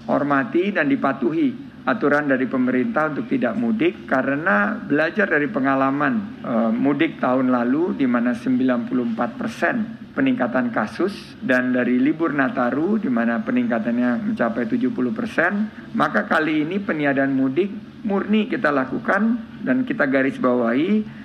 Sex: male